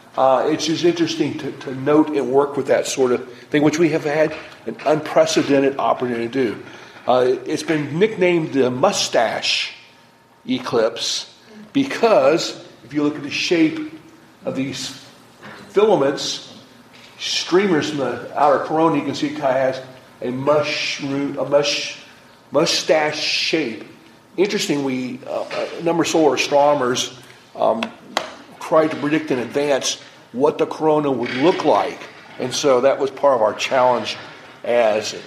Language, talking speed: English, 140 wpm